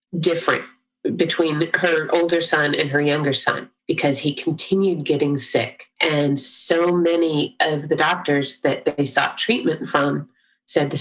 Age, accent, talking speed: 30-49, American, 145 wpm